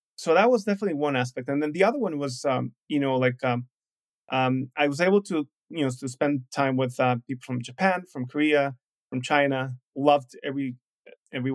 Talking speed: 205 wpm